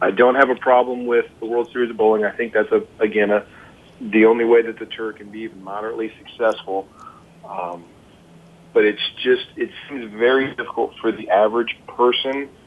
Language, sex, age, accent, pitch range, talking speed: English, male, 40-59, American, 100-120 Hz, 190 wpm